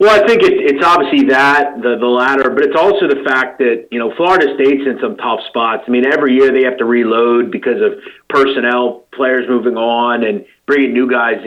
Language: English